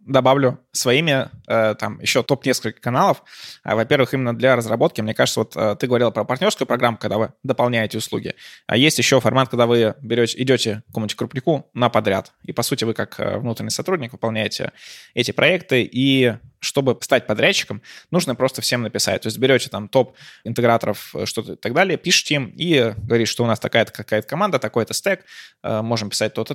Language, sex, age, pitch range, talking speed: Russian, male, 20-39, 110-130 Hz, 175 wpm